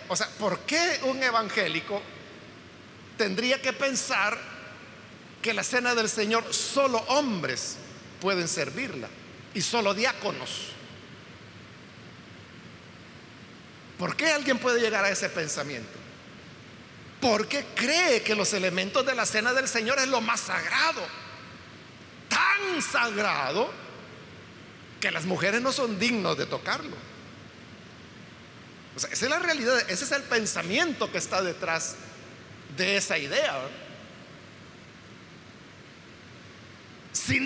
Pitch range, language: 200-265 Hz, Spanish